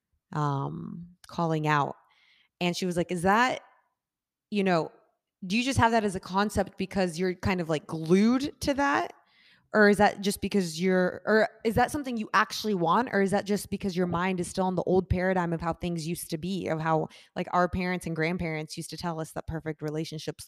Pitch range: 170-215 Hz